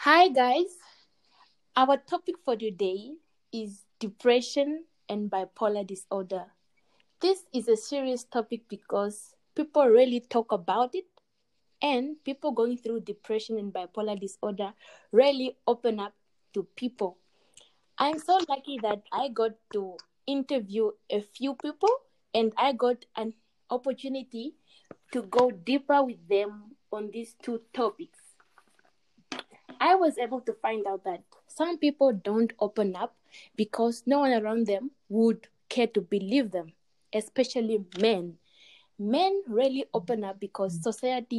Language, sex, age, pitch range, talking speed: English, female, 20-39, 210-275 Hz, 130 wpm